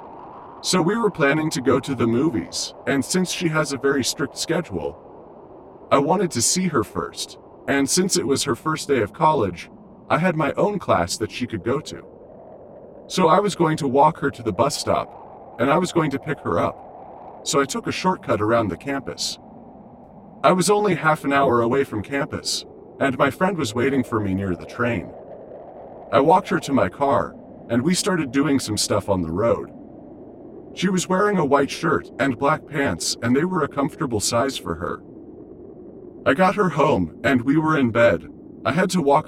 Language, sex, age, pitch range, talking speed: English, male, 40-59, 115-185 Hz, 205 wpm